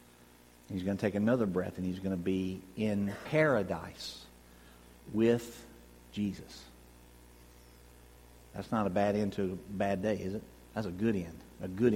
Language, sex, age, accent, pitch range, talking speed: English, male, 50-69, American, 95-155 Hz, 160 wpm